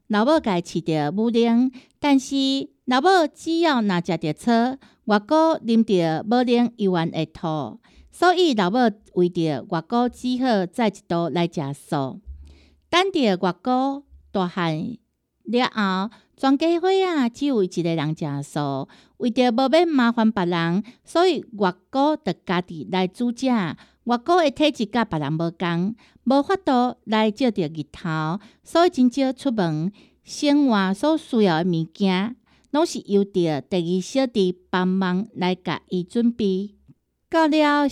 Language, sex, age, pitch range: Chinese, female, 60-79, 180-260 Hz